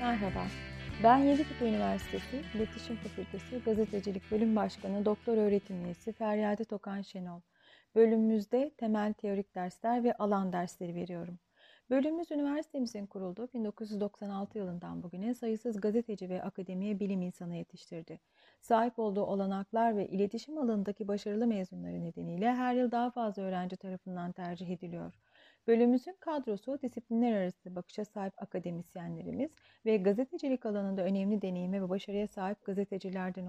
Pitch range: 190-240 Hz